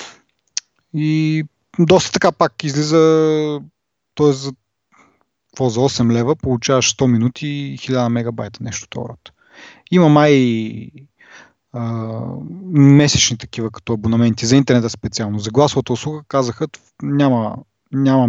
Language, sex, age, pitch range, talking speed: Bulgarian, male, 30-49, 115-150 Hz, 110 wpm